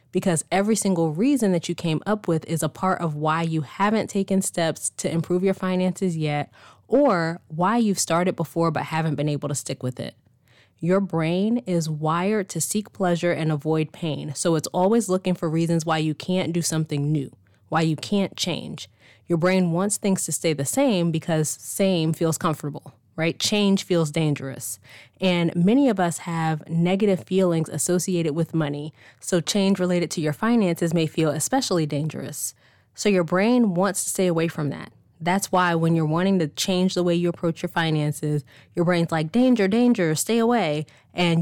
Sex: female